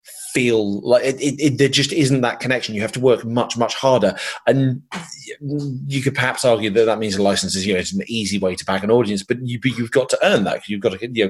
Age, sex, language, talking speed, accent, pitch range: 30-49, male, English, 265 wpm, British, 110-145 Hz